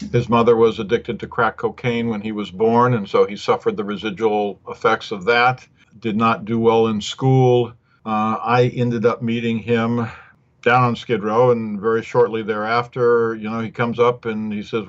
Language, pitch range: English, 115-130 Hz